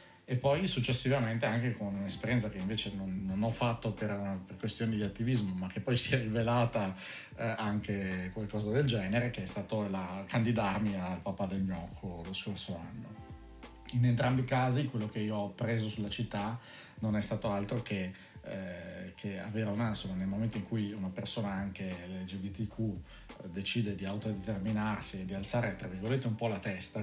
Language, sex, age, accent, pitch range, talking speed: Italian, male, 40-59, native, 100-120 Hz, 175 wpm